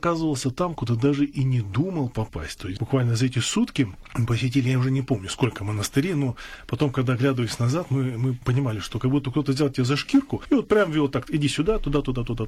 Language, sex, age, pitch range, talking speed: Russian, male, 20-39, 115-145 Hz, 230 wpm